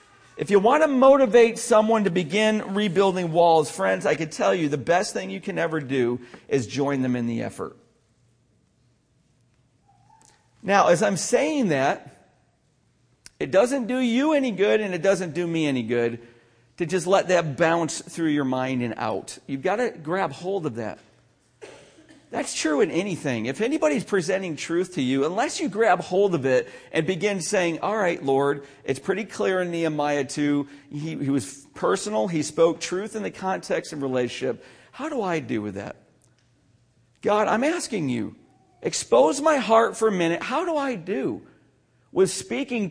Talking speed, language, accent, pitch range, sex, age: 175 wpm, English, American, 140-210 Hz, male, 40-59